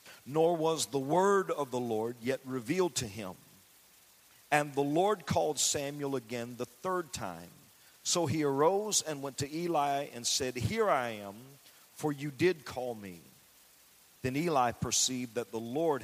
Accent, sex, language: American, male, English